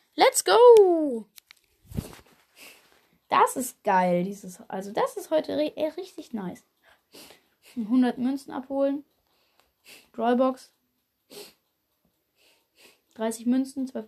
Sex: female